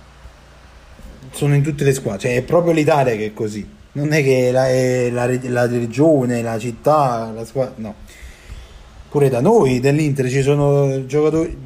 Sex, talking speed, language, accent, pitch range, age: male, 165 wpm, Italian, native, 105-150 Hz, 30-49